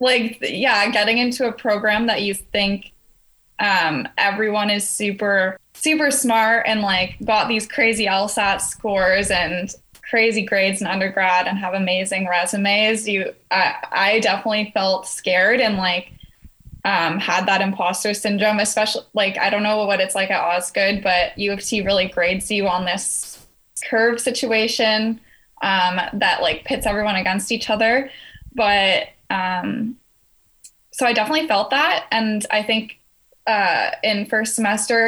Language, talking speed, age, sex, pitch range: English, 150 wpm, 10-29, female, 195-225 Hz